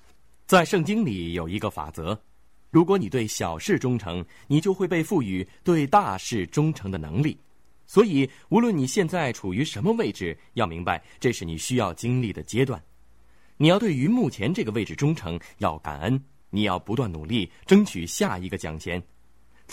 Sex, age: male, 20-39